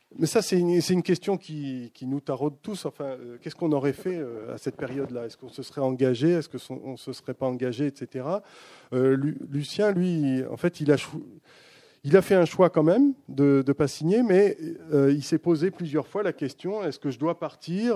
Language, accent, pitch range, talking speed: French, French, 135-175 Hz, 230 wpm